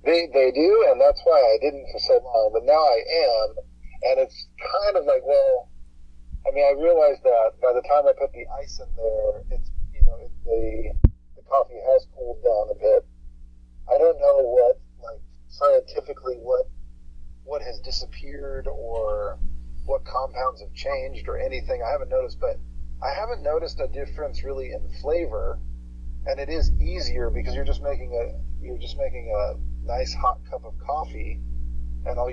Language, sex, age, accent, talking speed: English, male, 40-59, American, 175 wpm